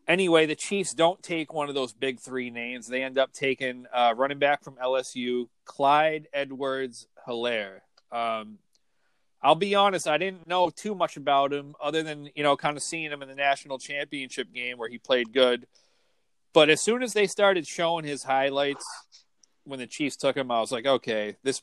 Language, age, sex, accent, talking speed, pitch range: English, 30-49, male, American, 195 wpm, 125-155 Hz